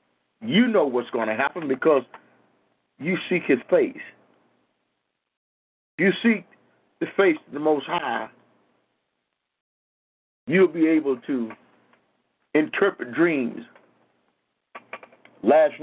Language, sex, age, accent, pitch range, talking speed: English, male, 50-69, American, 135-195 Hz, 100 wpm